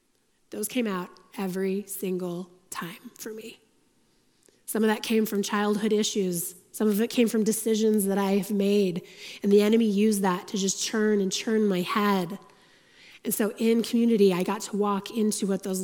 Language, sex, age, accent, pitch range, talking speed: English, female, 20-39, American, 195-235 Hz, 180 wpm